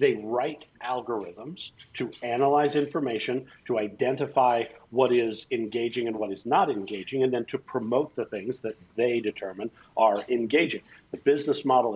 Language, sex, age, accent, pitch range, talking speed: English, male, 50-69, American, 110-140 Hz, 150 wpm